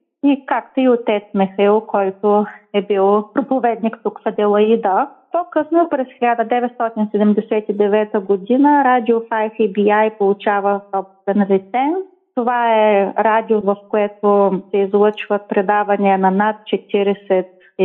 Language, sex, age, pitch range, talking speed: Bulgarian, female, 30-49, 200-235 Hz, 110 wpm